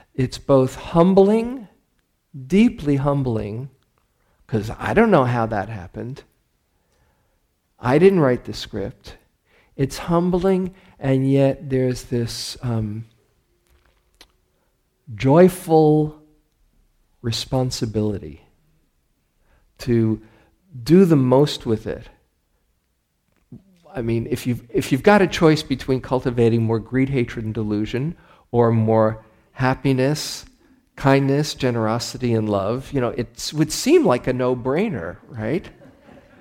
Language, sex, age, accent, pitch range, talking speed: English, male, 50-69, American, 115-145 Hz, 105 wpm